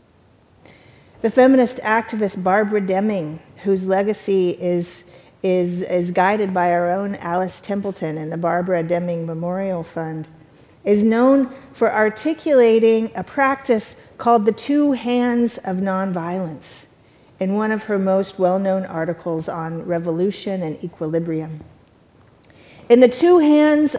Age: 50-69